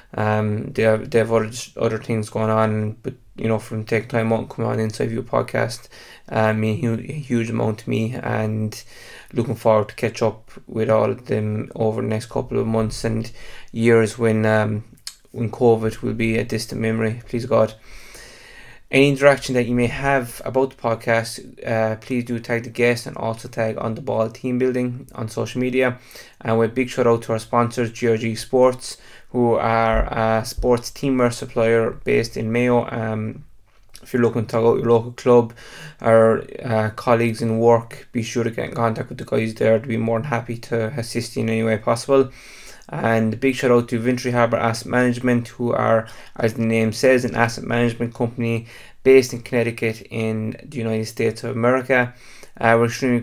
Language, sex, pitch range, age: English, male, 110-125 Hz, 20-39